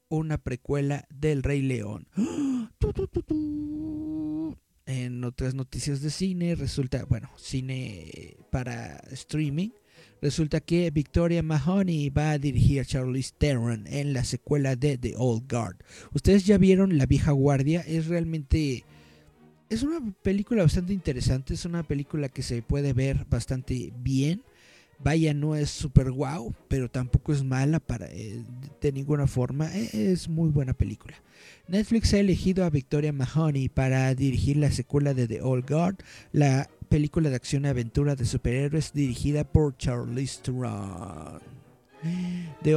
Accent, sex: Mexican, male